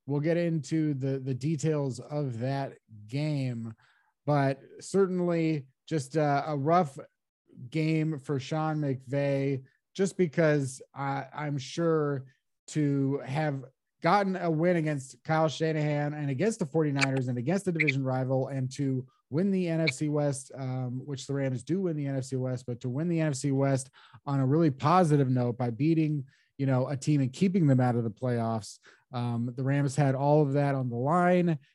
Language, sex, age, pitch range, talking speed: English, male, 30-49, 130-155 Hz, 170 wpm